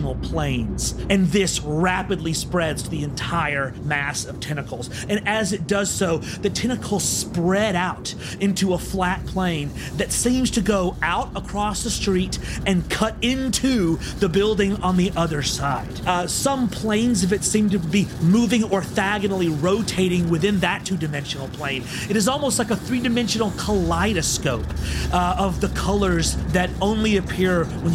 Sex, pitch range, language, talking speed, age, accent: male, 140-200 Hz, English, 150 wpm, 30-49, American